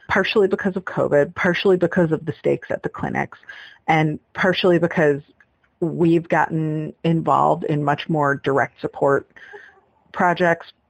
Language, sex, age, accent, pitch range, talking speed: English, female, 30-49, American, 140-175 Hz, 130 wpm